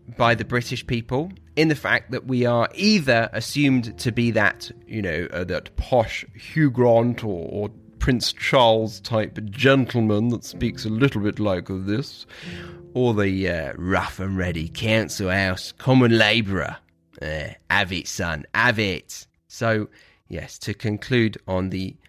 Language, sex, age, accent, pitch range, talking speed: English, male, 30-49, British, 105-145 Hz, 155 wpm